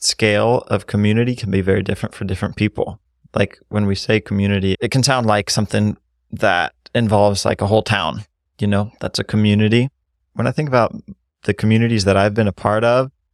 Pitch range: 95-105 Hz